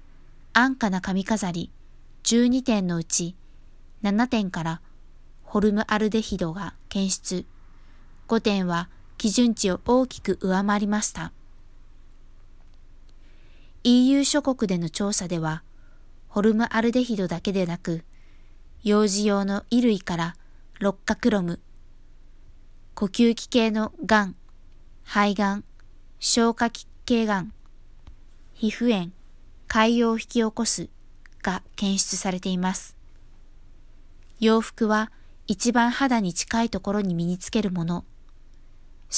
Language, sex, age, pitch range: Japanese, female, 20-39, 165-225 Hz